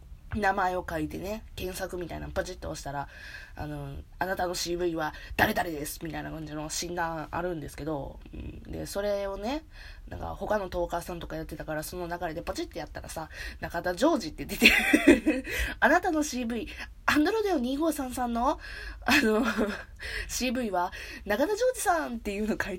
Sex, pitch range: female, 155-255 Hz